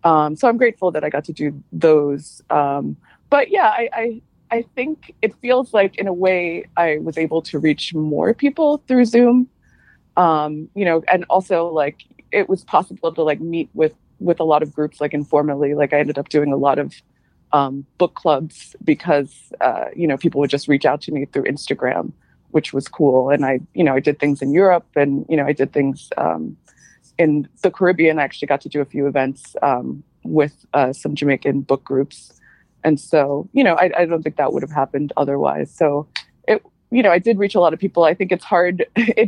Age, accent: 20-39, American